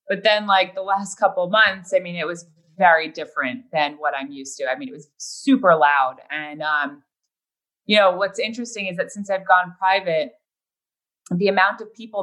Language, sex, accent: English, female, American